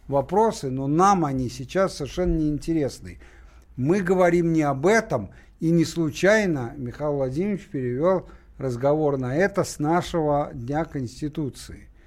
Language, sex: Russian, male